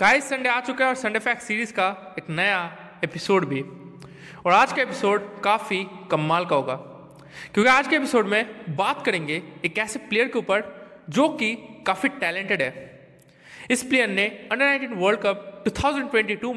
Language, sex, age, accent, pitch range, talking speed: Hindi, male, 20-39, native, 155-225 Hz, 185 wpm